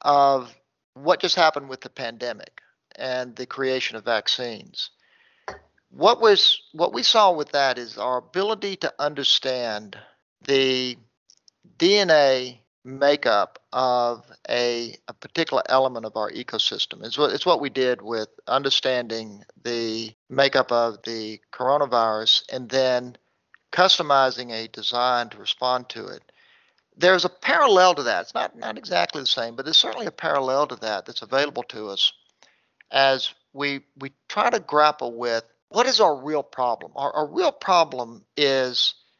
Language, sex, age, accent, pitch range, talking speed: English, male, 50-69, American, 120-155 Hz, 145 wpm